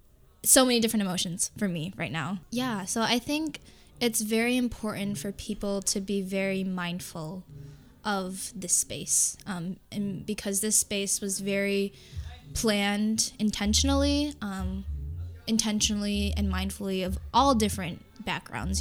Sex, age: female, 10-29